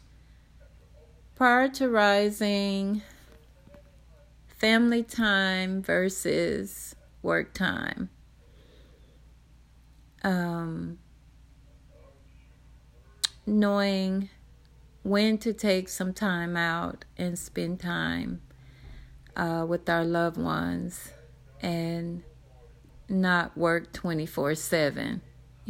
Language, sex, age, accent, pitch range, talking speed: English, female, 30-49, American, 165-215 Hz, 60 wpm